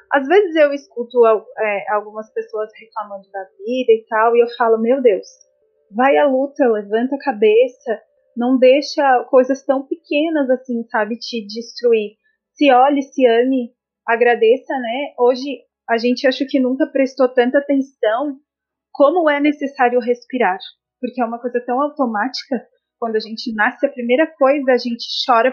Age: 30-49